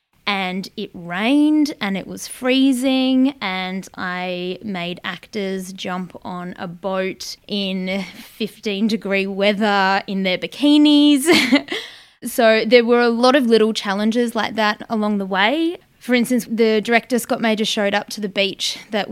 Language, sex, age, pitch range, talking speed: English, female, 20-39, 190-230 Hz, 145 wpm